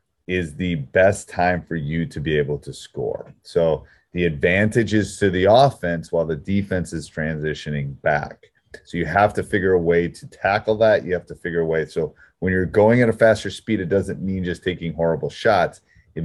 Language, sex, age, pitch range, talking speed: English, male, 30-49, 80-105 Hz, 205 wpm